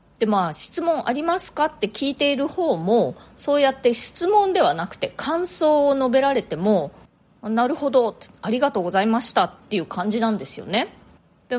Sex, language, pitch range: female, Japanese, 190-275 Hz